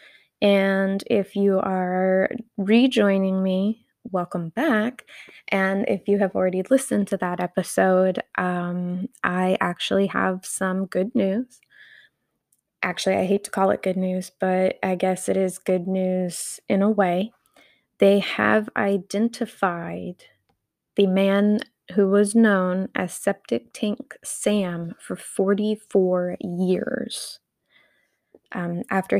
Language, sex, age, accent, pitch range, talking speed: English, female, 10-29, American, 185-210 Hz, 120 wpm